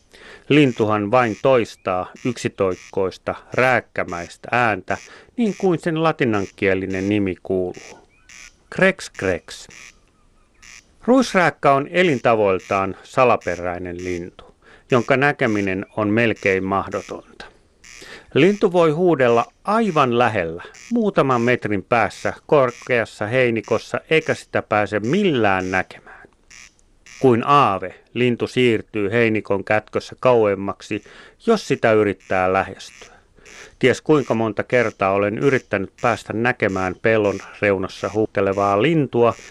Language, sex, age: Finnish, male, 30-49